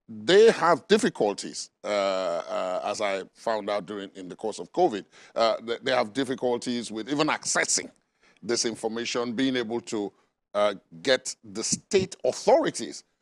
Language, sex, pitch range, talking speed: English, male, 115-145 Hz, 145 wpm